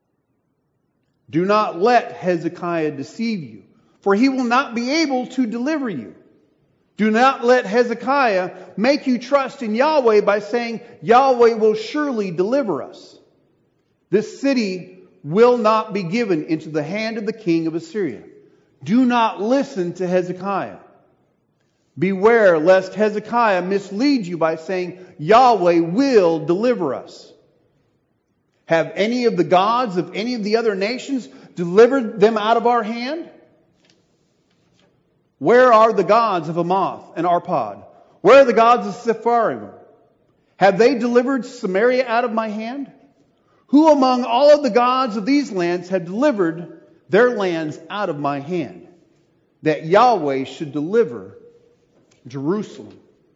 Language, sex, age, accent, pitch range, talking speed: English, male, 40-59, American, 175-245 Hz, 135 wpm